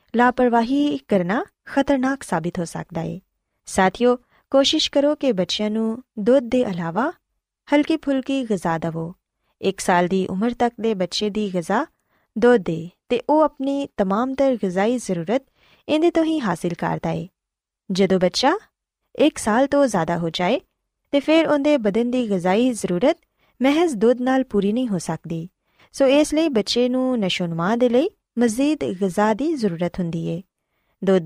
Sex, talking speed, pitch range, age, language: female, 150 wpm, 185-270 Hz, 20-39, Punjabi